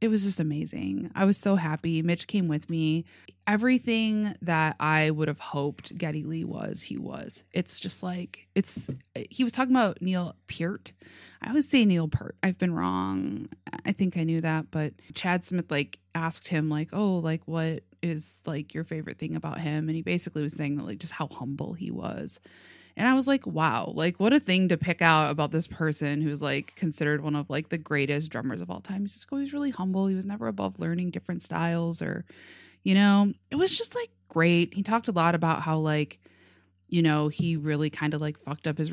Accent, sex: American, female